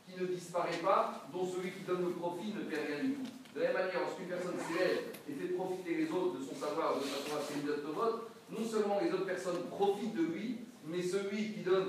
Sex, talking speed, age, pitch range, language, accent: male, 235 wpm, 40-59, 160-220 Hz, French, French